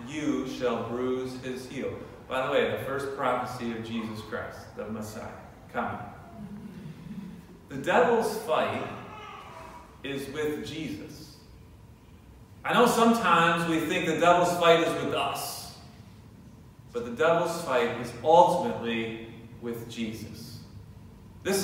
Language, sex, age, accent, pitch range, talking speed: English, male, 40-59, American, 115-155 Hz, 120 wpm